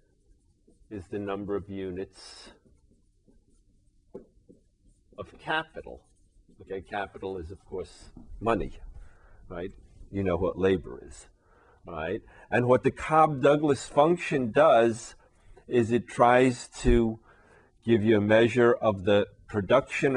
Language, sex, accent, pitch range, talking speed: English, male, American, 95-120 Hz, 110 wpm